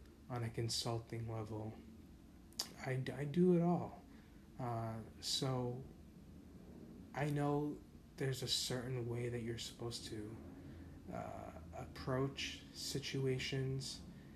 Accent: American